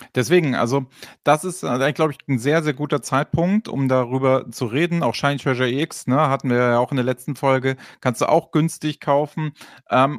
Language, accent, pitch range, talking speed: German, German, 125-170 Hz, 210 wpm